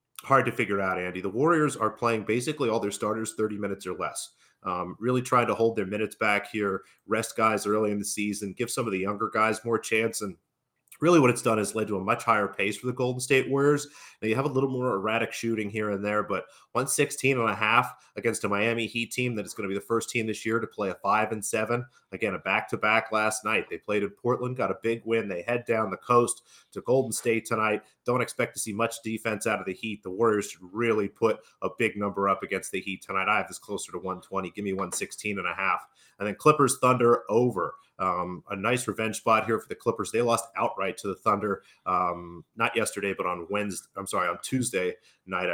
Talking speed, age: 235 wpm, 30-49